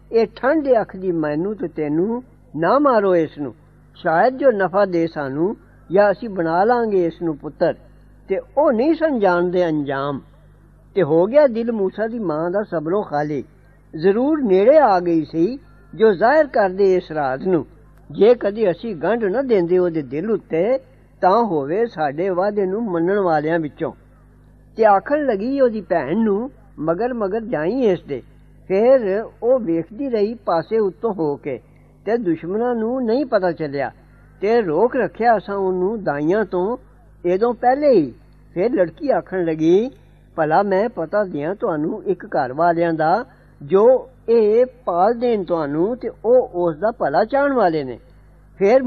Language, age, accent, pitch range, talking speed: English, 60-79, Indian, 165-230 Hz, 125 wpm